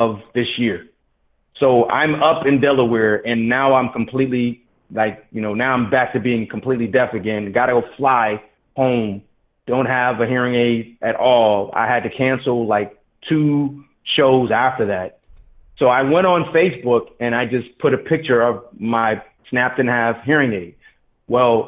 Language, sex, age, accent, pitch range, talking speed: English, male, 30-49, American, 115-145 Hz, 170 wpm